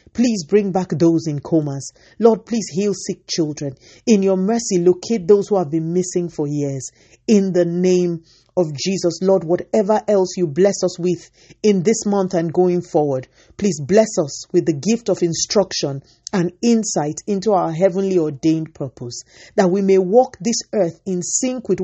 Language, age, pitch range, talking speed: English, 40-59, 155-195 Hz, 180 wpm